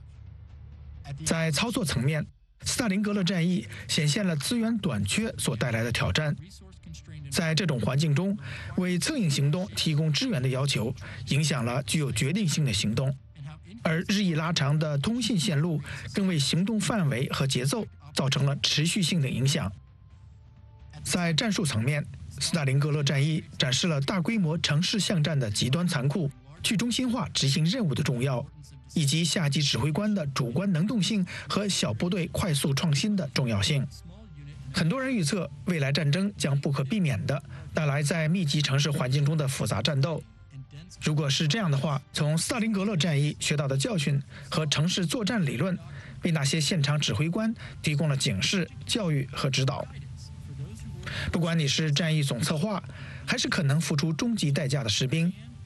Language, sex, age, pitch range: English, male, 50-69, 140-175 Hz